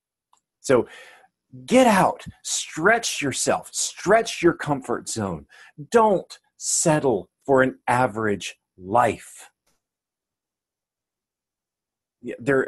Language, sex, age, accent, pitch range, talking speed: English, male, 40-59, American, 110-155 Hz, 75 wpm